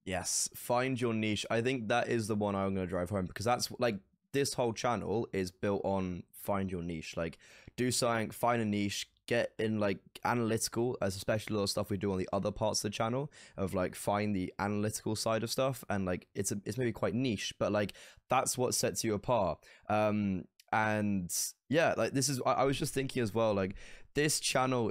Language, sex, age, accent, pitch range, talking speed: English, male, 10-29, British, 105-125 Hz, 215 wpm